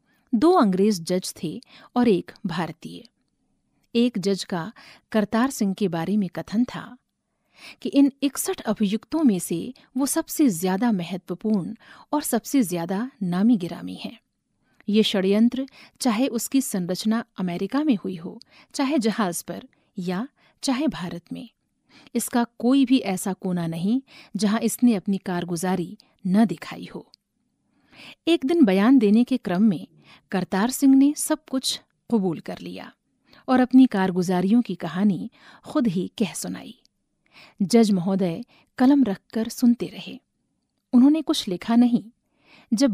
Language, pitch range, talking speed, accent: Hindi, 190-260 Hz, 135 wpm, native